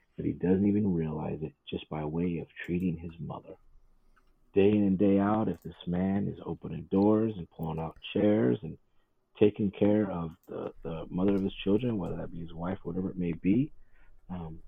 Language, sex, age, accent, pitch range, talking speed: English, male, 40-59, American, 80-95 Hz, 190 wpm